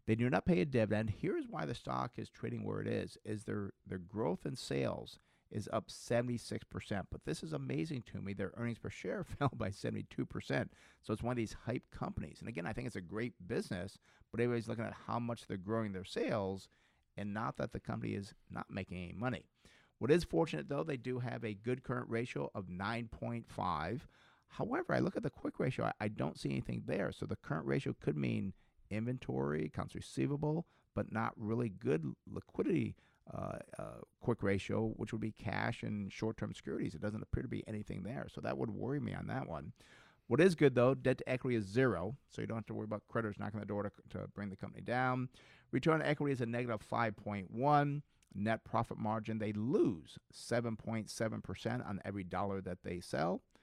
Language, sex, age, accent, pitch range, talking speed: English, male, 50-69, American, 100-120 Hz, 205 wpm